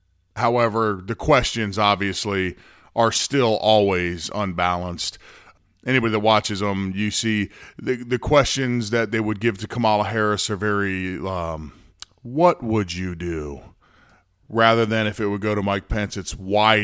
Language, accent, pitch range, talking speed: English, American, 95-115 Hz, 150 wpm